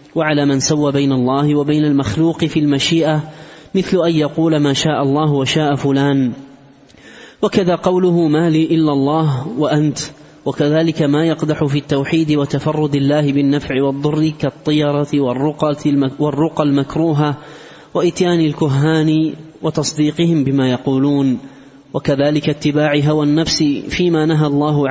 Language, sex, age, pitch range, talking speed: Arabic, male, 20-39, 140-155 Hz, 115 wpm